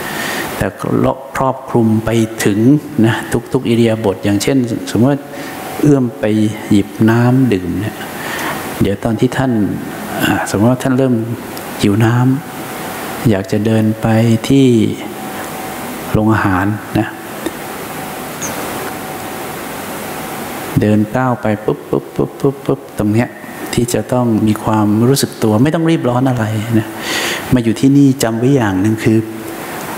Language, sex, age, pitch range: English, male, 60-79, 110-125 Hz